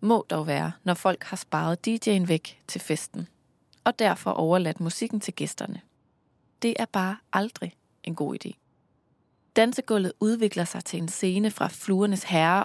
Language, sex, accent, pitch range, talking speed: Danish, female, native, 175-230 Hz, 155 wpm